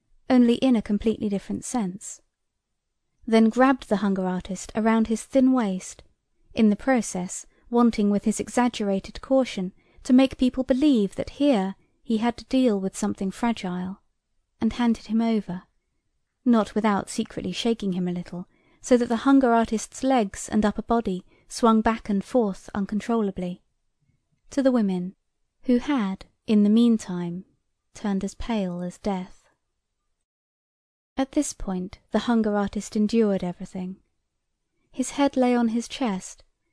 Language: English